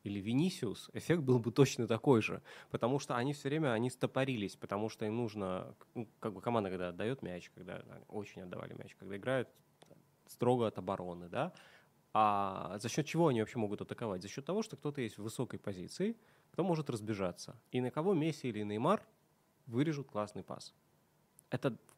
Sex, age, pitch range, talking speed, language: male, 20-39, 105-145 Hz, 185 wpm, Russian